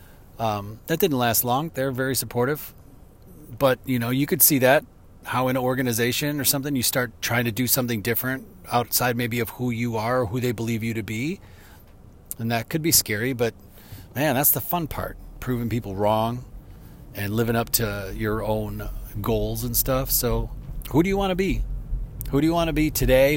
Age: 40-59